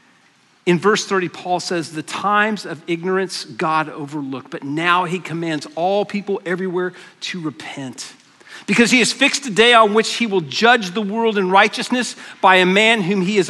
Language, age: English, 40-59